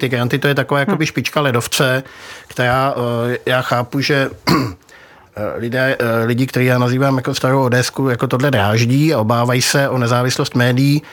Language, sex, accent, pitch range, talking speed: Czech, male, native, 125-140 Hz, 160 wpm